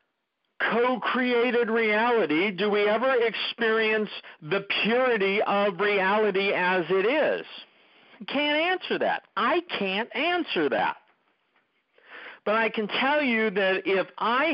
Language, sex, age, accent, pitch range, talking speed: English, male, 50-69, American, 145-230 Hz, 115 wpm